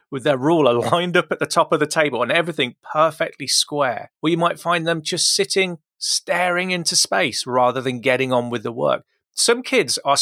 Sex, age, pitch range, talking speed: male, 30-49, 130-170 Hz, 205 wpm